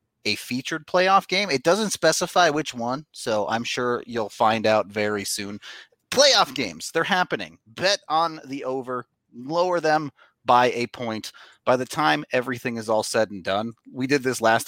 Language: English